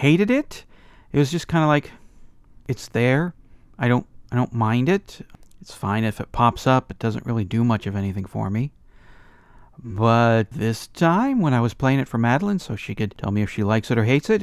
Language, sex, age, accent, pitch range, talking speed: English, male, 40-59, American, 110-140 Hz, 220 wpm